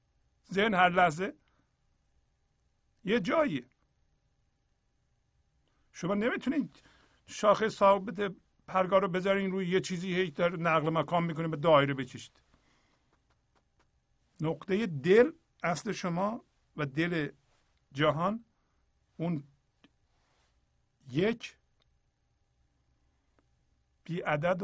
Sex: male